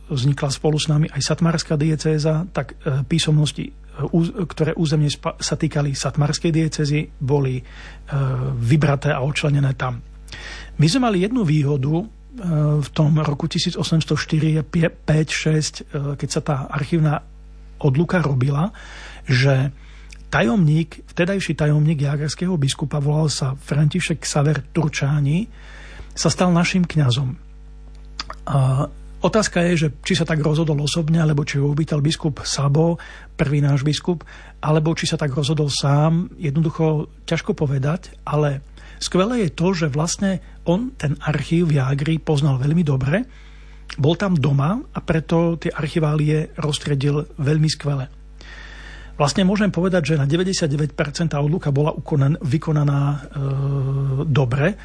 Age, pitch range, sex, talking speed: 40-59, 145-165 Hz, male, 125 wpm